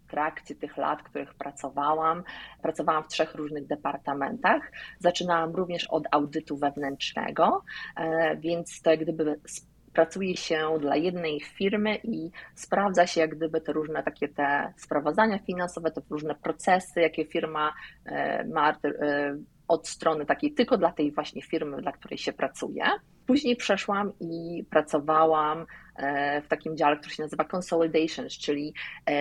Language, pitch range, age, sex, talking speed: Polish, 150-180 Hz, 30-49, female, 135 wpm